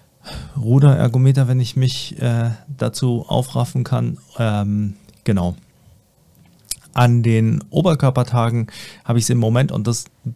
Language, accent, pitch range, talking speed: German, German, 110-130 Hz, 125 wpm